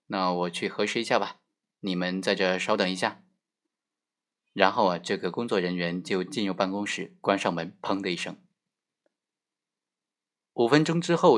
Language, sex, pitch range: Chinese, male, 95-150 Hz